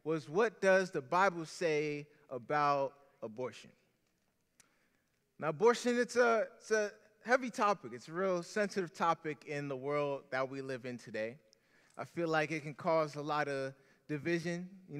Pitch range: 145-180 Hz